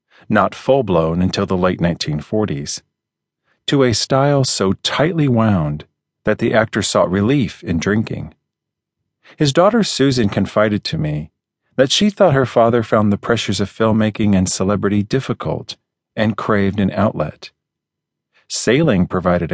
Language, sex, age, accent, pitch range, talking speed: English, male, 40-59, American, 95-125 Hz, 135 wpm